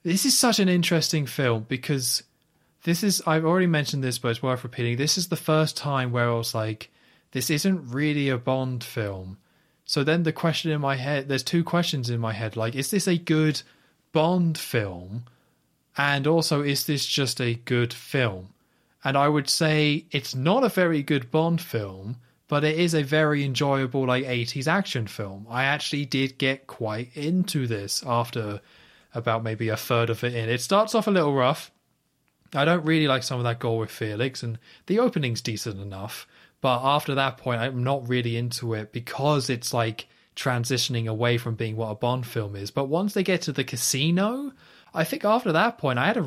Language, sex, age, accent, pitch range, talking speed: English, male, 20-39, British, 115-155 Hz, 200 wpm